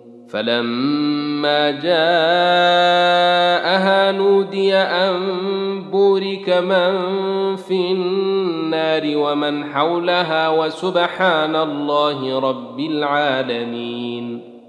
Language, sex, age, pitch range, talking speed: Arabic, male, 30-49, 145-190 Hz, 55 wpm